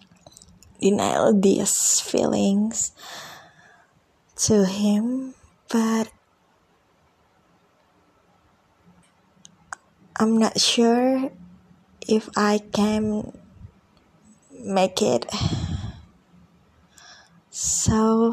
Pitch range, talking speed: 180-245 Hz, 50 wpm